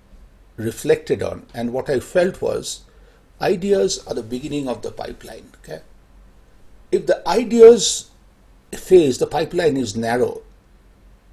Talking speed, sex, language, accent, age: 115 wpm, male, English, Indian, 60-79